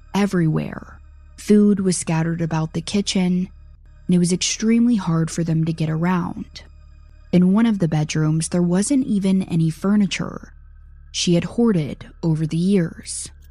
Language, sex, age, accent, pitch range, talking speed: English, female, 20-39, American, 155-200 Hz, 145 wpm